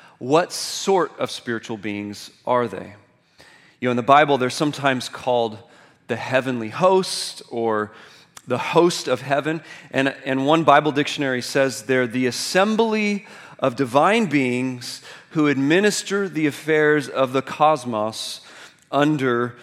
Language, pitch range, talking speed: English, 125-165 Hz, 130 wpm